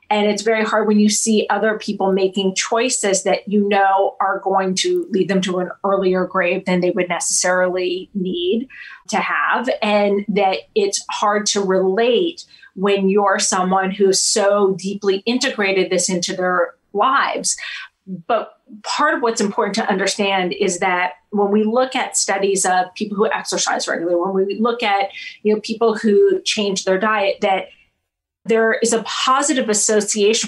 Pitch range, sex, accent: 190-225 Hz, female, American